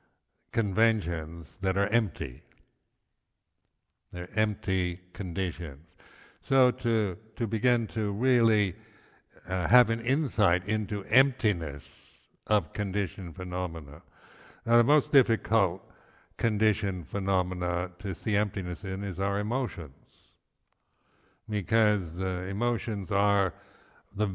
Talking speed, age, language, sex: 100 wpm, 60-79, English, male